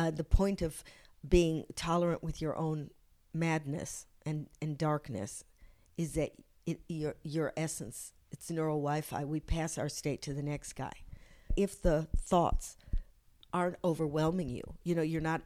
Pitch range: 140-165 Hz